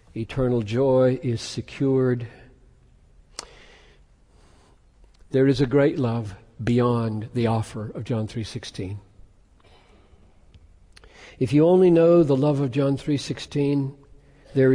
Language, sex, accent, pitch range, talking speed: Hindi, male, American, 110-145 Hz, 100 wpm